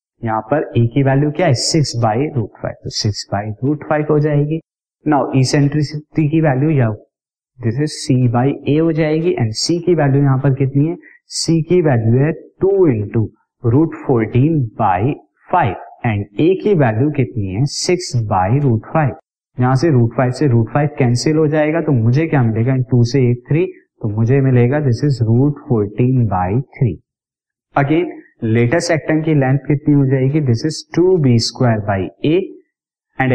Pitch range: 120-155 Hz